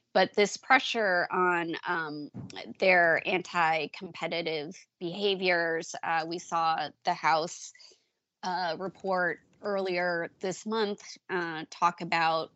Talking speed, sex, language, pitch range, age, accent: 100 wpm, female, English, 170-205 Hz, 20-39, American